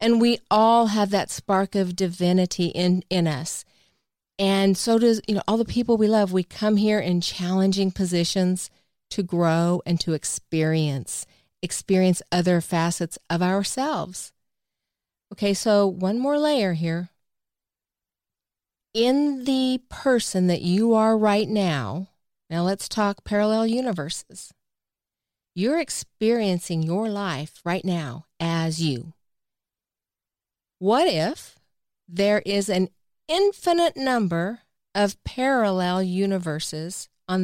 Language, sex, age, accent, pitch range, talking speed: English, female, 40-59, American, 170-220 Hz, 120 wpm